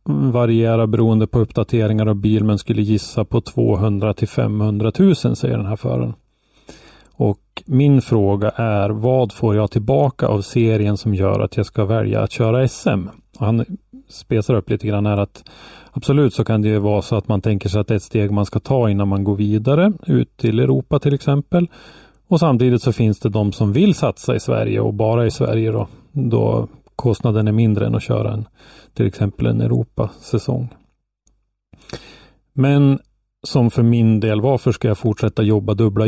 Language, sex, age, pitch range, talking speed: Swedish, male, 30-49, 105-125 Hz, 190 wpm